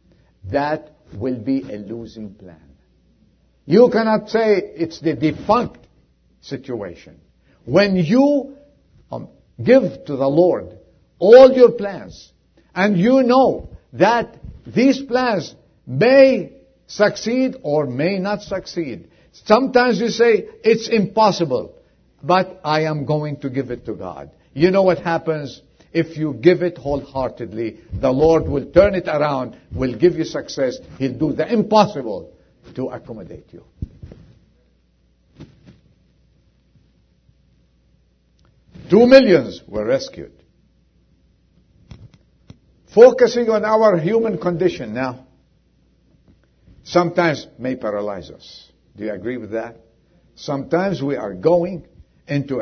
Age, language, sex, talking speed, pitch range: 50-69, English, male, 115 wpm, 125-205 Hz